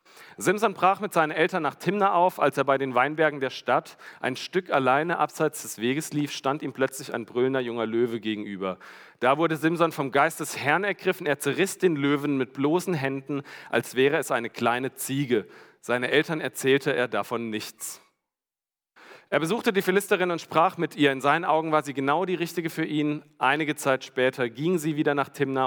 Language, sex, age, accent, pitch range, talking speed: German, male, 40-59, German, 120-160 Hz, 195 wpm